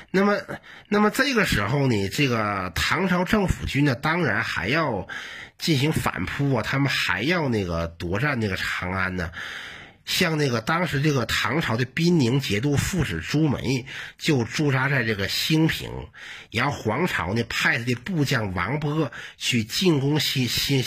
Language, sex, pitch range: Chinese, male, 110-155 Hz